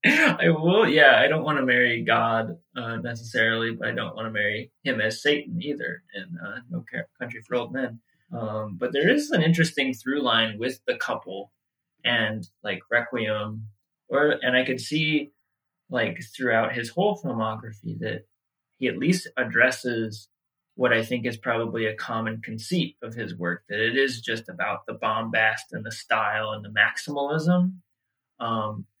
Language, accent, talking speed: English, American, 170 wpm